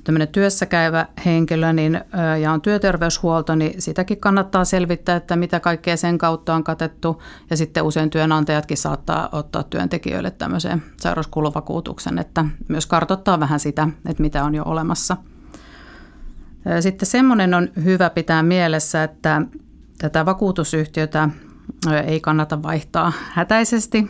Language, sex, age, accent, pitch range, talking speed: Finnish, female, 50-69, native, 155-175 Hz, 125 wpm